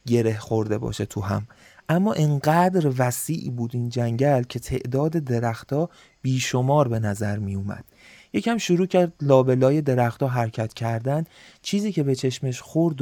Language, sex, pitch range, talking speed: Persian, male, 115-155 Hz, 145 wpm